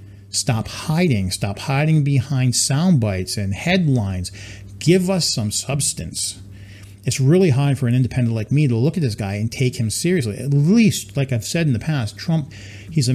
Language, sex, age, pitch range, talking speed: English, male, 40-59, 100-145 Hz, 185 wpm